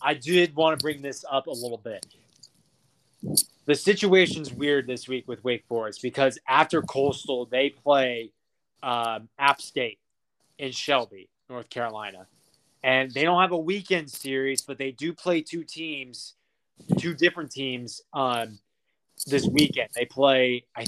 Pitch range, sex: 130-155 Hz, male